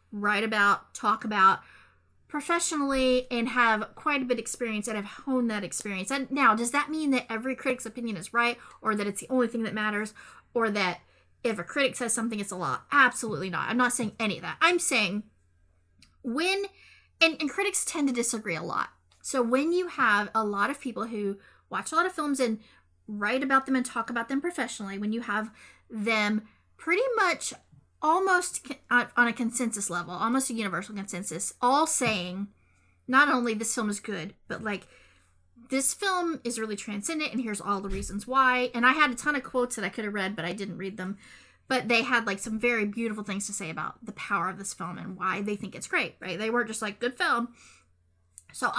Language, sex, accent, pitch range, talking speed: English, female, American, 205-265 Hz, 210 wpm